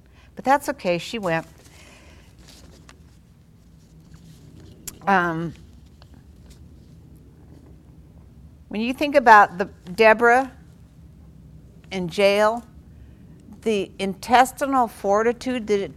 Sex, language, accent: female, English, American